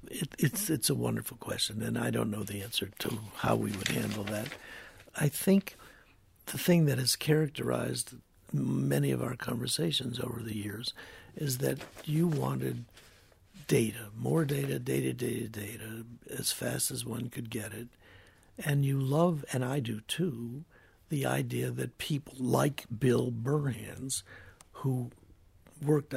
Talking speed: 150 wpm